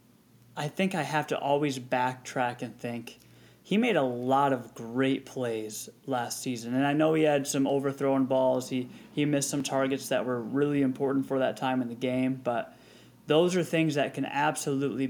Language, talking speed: English, 190 wpm